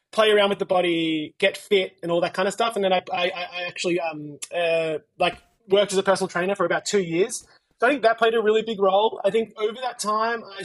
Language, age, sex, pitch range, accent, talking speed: English, 20-39, male, 165-200 Hz, Australian, 260 wpm